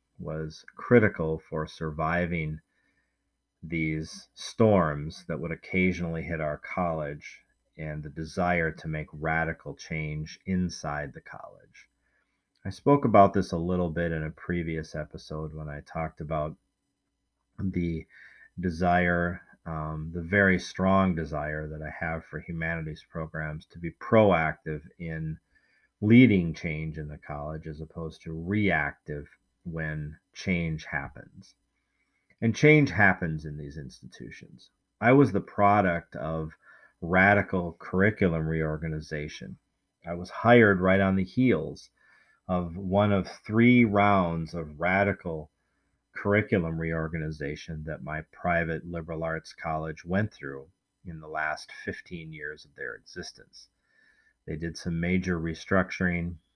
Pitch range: 80-95 Hz